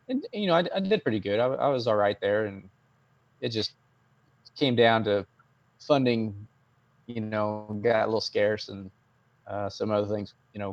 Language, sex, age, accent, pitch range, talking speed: English, male, 20-39, American, 105-125 Hz, 185 wpm